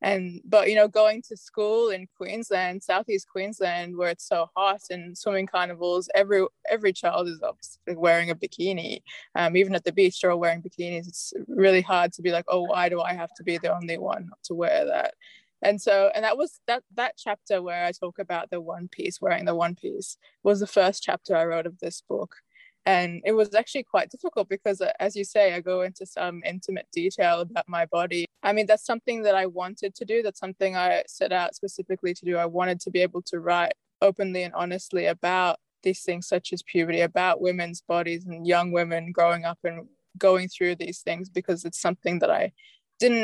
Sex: female